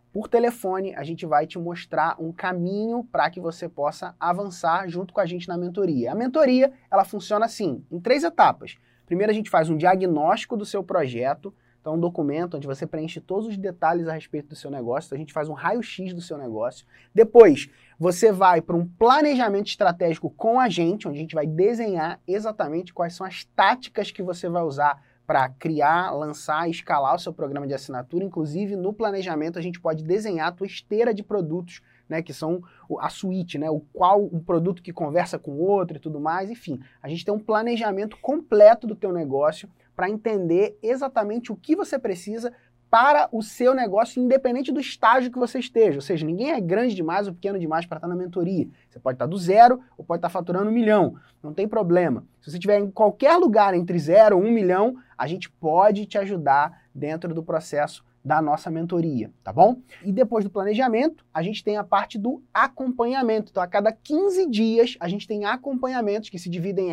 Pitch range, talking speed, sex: 165-220 Hz, 200 wpm, male